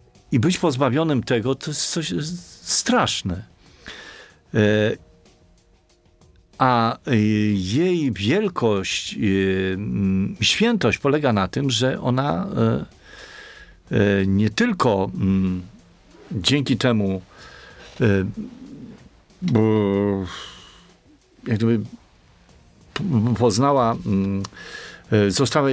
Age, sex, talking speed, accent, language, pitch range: 50-69, male, 60 wpm, native, Polish, 100-140 Hz